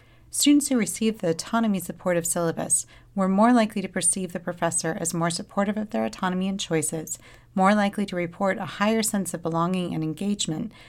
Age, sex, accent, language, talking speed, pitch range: 40-59, female, American, English, 175 wpm, 170-215 Hz